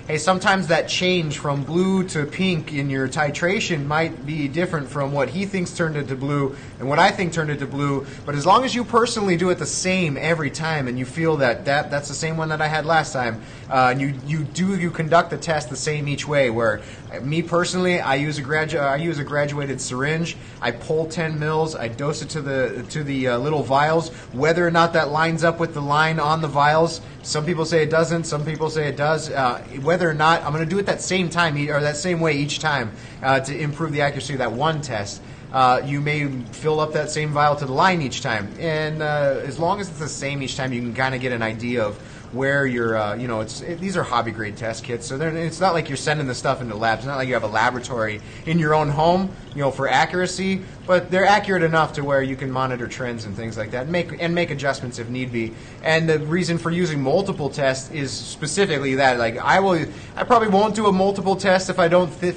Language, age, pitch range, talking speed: English, 30-49, 135-170 Hz, 245 wpm